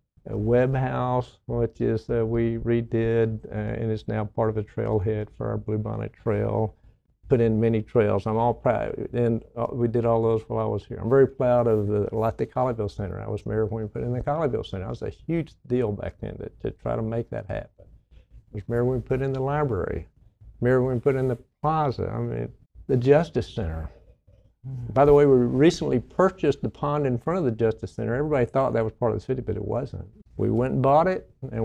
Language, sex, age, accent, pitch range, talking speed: English, male, 60-79, American, 110-130 Hz, 235 wpm